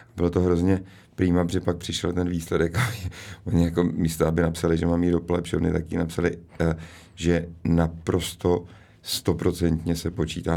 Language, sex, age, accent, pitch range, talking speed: Czech, male, 50-69, native, 85-100 Hz, 140 wpm